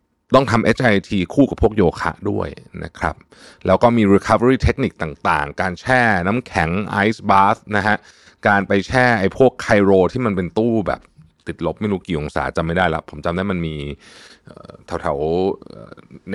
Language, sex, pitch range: Thai, male, 85-115 Hz